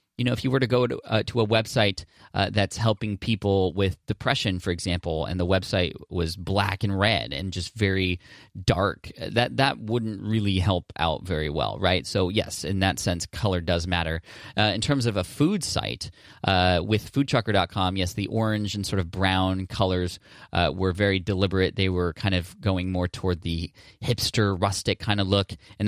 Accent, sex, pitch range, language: American, male, 90-110 Hz, English